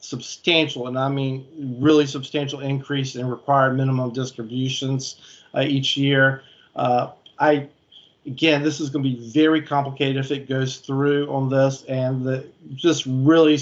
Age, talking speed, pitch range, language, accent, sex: 50-69, 145 wpm, 135-150 Hz, English, American, male